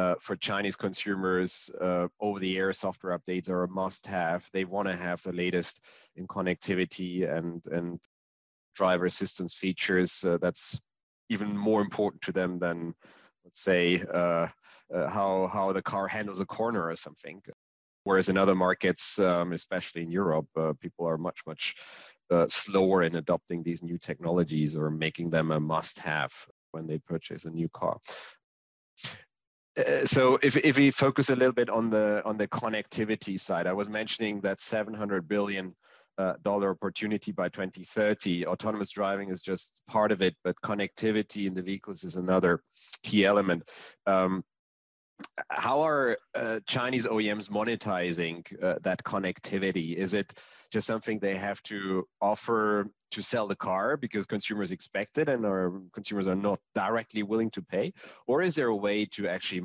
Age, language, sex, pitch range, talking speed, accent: 30-49, English, male, 90-105 Hz, 160 wpm, German